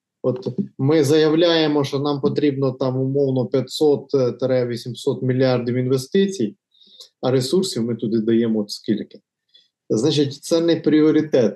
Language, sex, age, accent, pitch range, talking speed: Ukrainian, male, 20-39, native, 115-155 Hz, 115 wpm